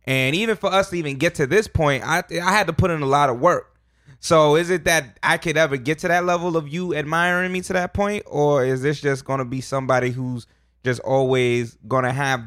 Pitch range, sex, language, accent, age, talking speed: 120-165 Hz, male, English, American, 20-39, 250 wpm